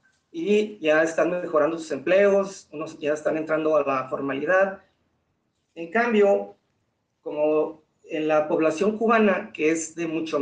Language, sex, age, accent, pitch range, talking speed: Spanish, male, 30-49, Mexican, 145-190 Hz, 140 wpm